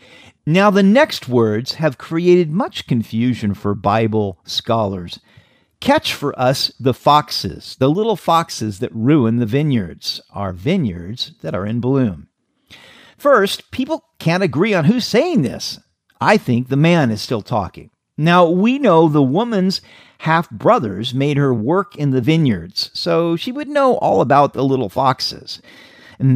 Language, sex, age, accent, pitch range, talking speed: English, male, 50-69, American, 115-175 Hz, 150 wpm